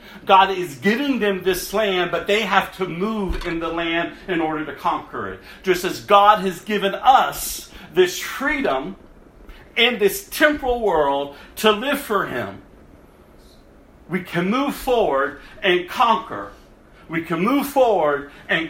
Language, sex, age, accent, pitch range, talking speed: English, male, 50-69, American, 170-245 Hz, 150 wpm